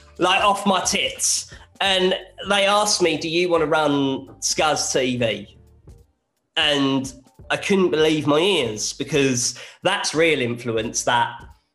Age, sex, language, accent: 20-39, male, English, British